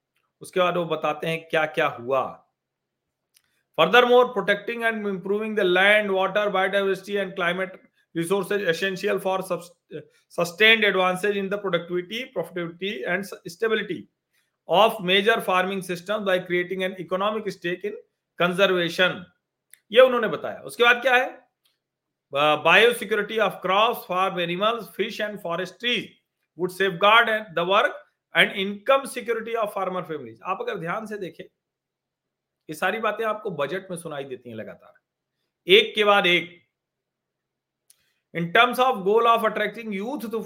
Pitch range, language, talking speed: 175-215 Hz, Hindi, 110 wpm